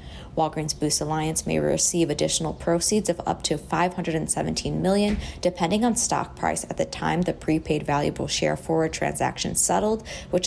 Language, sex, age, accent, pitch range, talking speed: English, female, 20-39, American, 150-180 Hz, 155 wpm